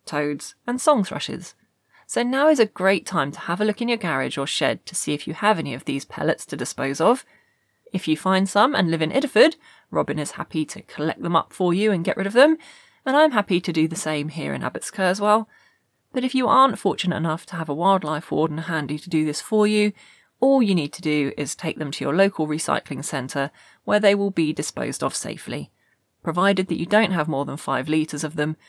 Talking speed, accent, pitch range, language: 235 wpm, British, 150-195 Hz, English